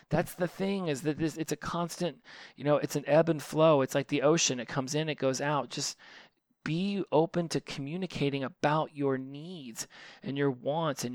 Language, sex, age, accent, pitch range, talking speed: English, male, 30-49, American, 125-145 Hz, 200 wpm